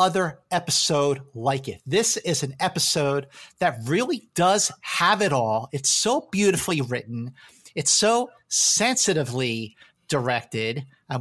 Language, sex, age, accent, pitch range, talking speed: English, male, 40-59, American, 140-195 Hz, 125 wpm